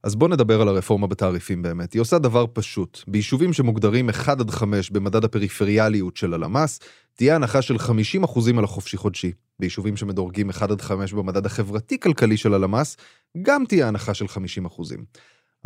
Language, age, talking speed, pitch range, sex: Hebrew, 30-49, 140 wpm, 100-130 Hz, male